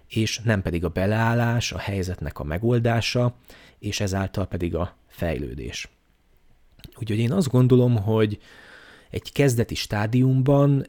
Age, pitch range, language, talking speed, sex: 30-49, 95-125 Hz, Hungarian, 120 wpm, male